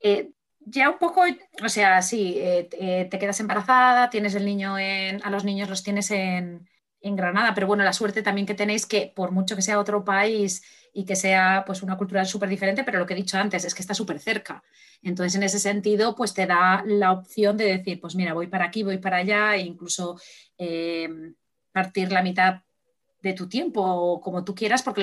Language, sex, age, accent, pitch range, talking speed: Spanish, female, 30-49, Spanish, 190-230 Hz, 210 wpm